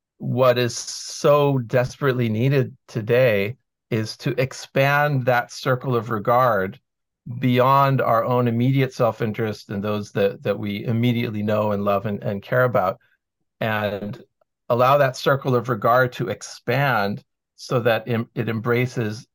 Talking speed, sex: 135 wpm, male